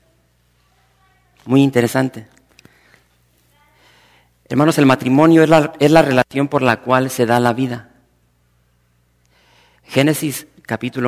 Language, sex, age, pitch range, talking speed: English, male, 40-59, 110-140 Hz, 95 wpm